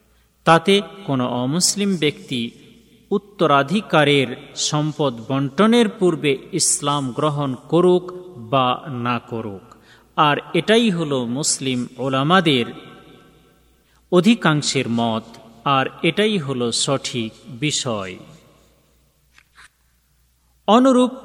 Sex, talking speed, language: male, 75 wpm, Bengali